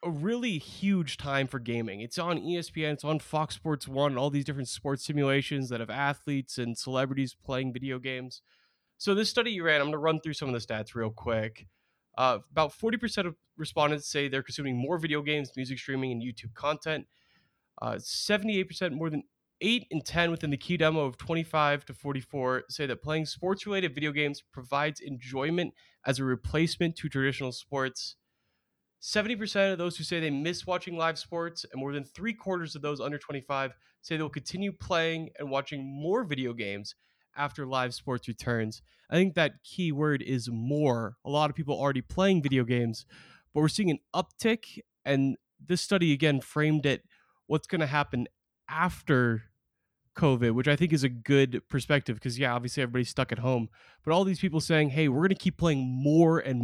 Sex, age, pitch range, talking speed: male, 20-39, 130-165 Hz, 190 wpm